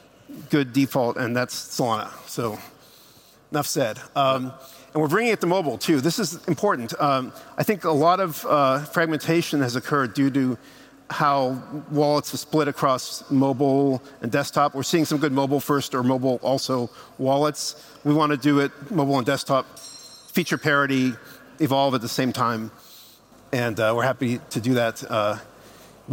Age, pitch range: 50-69, 130-160 Hz